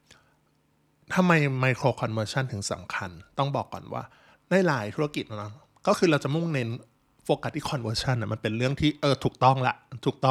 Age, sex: 20-39, male